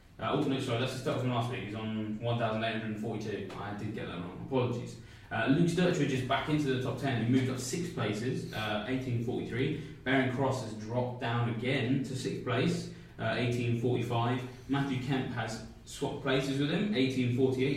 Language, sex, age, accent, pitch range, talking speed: English, male, 20-39, British, 110-135 Hz, 180 wpm